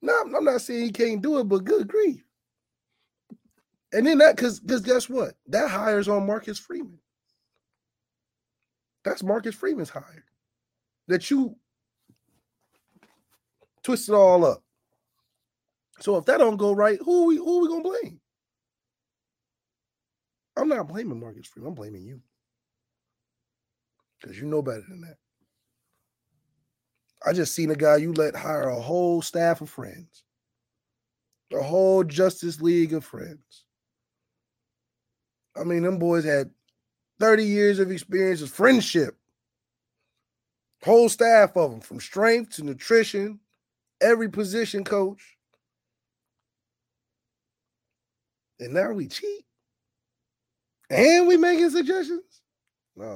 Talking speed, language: 120 wpm, English